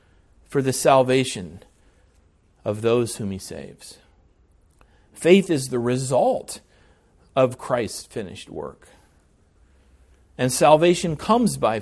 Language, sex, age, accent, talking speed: English, male, 40-59, American, 100 wpm